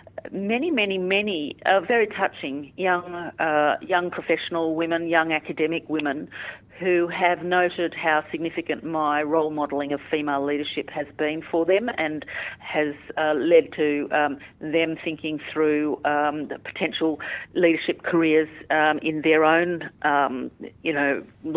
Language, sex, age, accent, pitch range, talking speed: English, female, 50-69, Australian, 150-175 Hz, 140 wpm